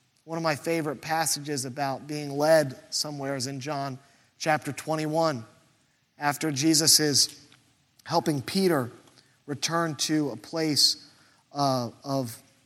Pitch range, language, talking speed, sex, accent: 125-150 Hz, English, 115 wpm, male, American